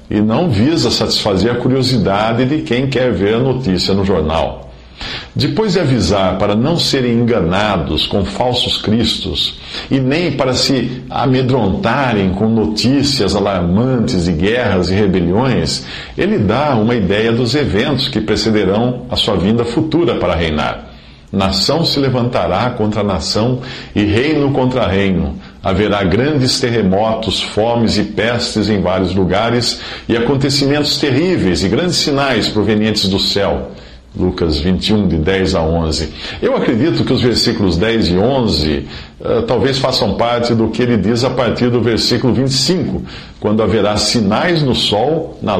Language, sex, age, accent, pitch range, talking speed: Portuguese, male, 50-69, Brazilian, 95-130 Hz, 145 wpm